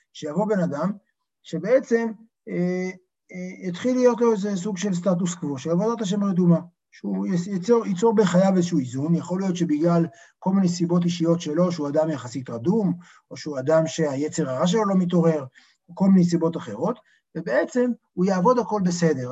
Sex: male